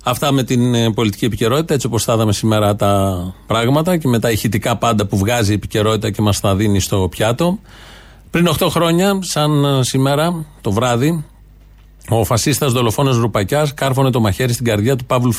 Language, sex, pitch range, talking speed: Greek, male, 110-145 Hz, 170 wpm